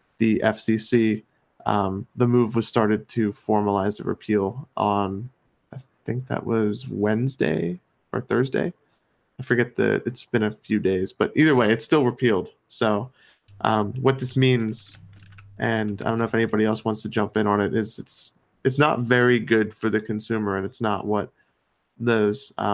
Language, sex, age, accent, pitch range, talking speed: English, male, 20-39, American, 105-125 Hz, 170 wpm